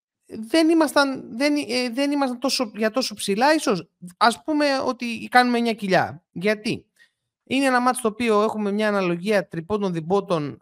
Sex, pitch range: male, 180-265 Hz